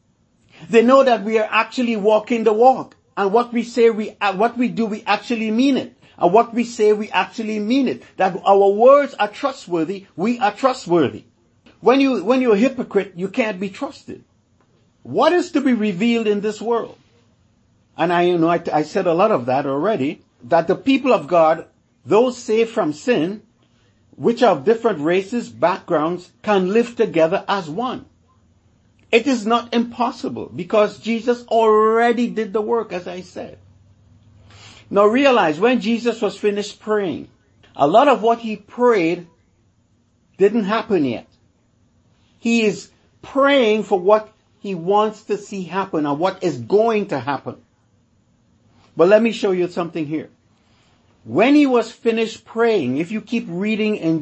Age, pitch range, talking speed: 50-69, 180-235 Hz, 165 wpm